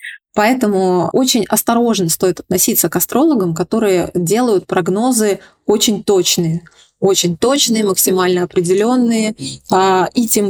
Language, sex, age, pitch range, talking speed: Russian, female, 20-39, 185-220 Hz, 105 wpm